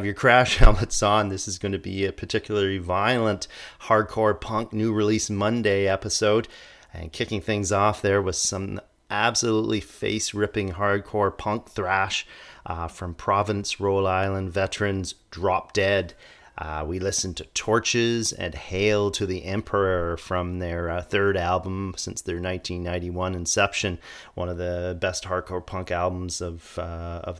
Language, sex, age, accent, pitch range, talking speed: English, male, 30-49, American, 90-105 Hz, 145 wpm